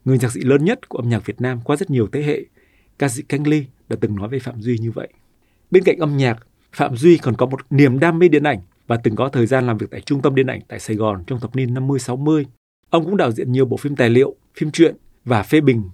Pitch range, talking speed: 115-145 Hz, 280 wpm